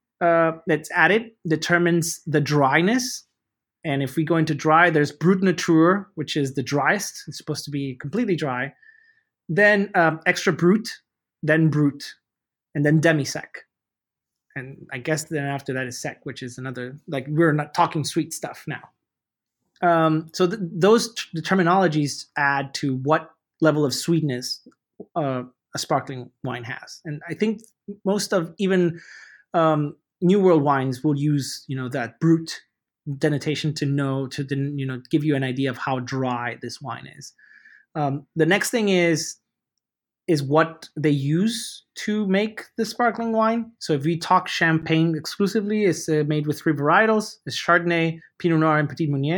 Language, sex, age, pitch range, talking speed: English, male, 30-49, 140-175 Hz, 165 wpm